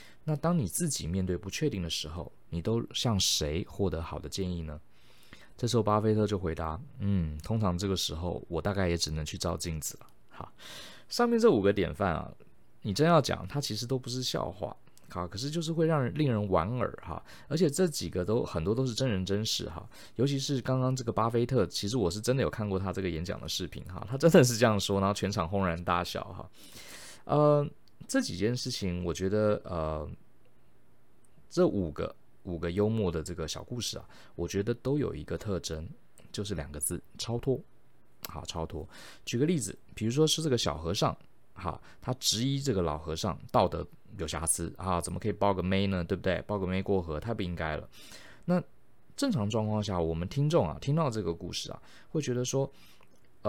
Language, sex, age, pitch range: Chinese, male, 20-39, 85-125 Hz